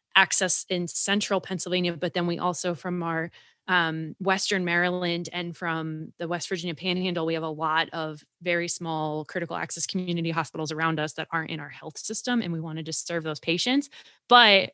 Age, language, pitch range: 20-39, English, 175-225 Hz